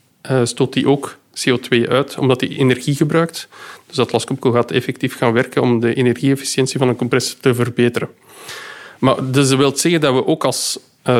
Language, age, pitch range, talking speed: Dutch, 50-69, 125-145 Hz, 190 wpm